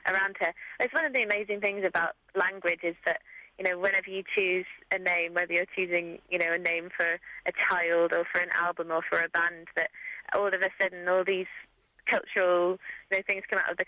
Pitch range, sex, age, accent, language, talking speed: 175-195 Hz, female, 20-39, British, English, 215 wpm